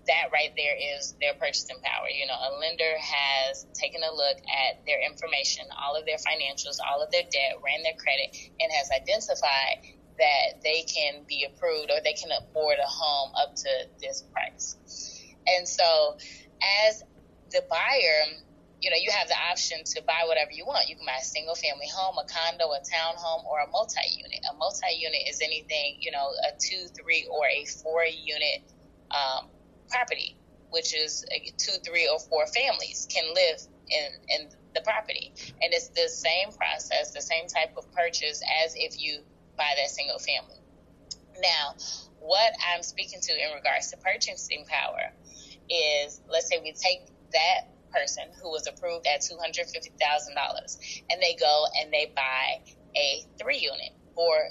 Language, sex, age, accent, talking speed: English, female, 20-39, American, 170 wpm